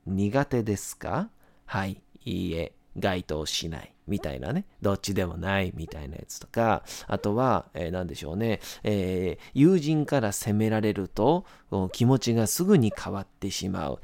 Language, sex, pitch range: Japanese, male, 95-155 Hz